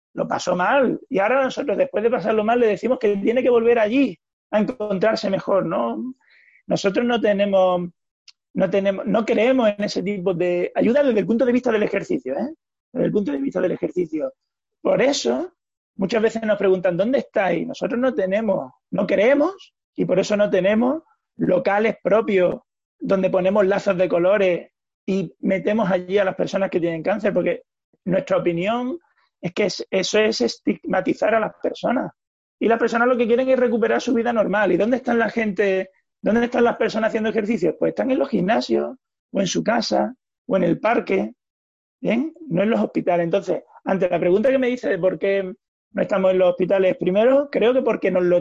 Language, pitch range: Spanish, 190-240 Hz